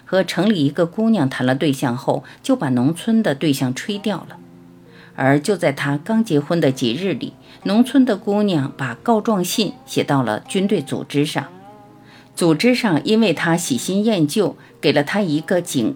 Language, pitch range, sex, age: Chinese, 135-215 Hz, female, 50-69